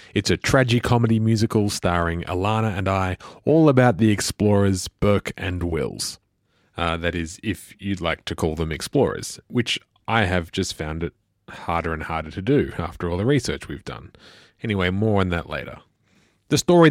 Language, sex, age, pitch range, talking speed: English, male, 30-49, 95-120 Hz, 175 wpm